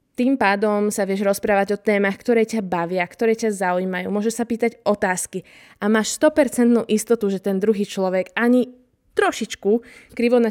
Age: 20-39